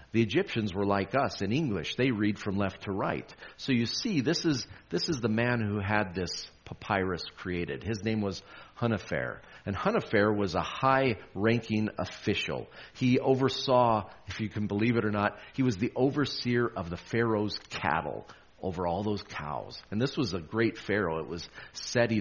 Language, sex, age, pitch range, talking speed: English, male, 40-59, 95-120 Hz, 180 wpm